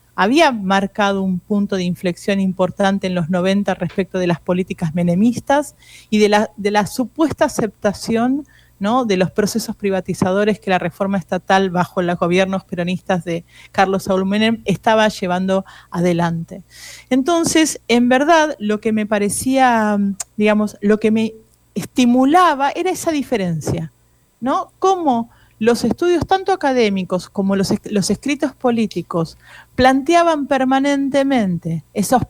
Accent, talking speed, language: Argentinian, 130 wpm, Spanish